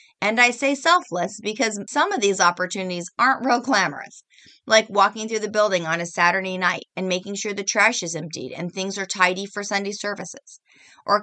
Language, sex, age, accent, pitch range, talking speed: English, female, 40-59, American, 175-225 Hz, 195 wpm